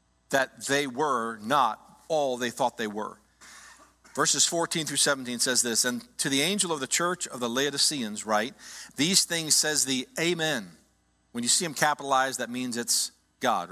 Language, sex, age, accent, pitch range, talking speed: English, male, 50-69, American, 120-185 Hz, 175 wpm